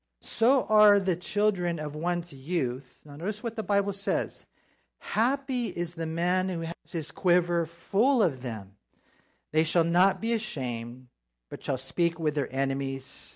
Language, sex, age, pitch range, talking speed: English, male, 40-59, 150-200 Hz, 155 wpm